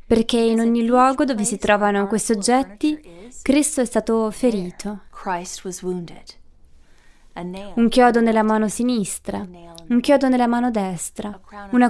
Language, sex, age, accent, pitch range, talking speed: Italian, female, 20-39, native, 205-255 Hz, 120 wpm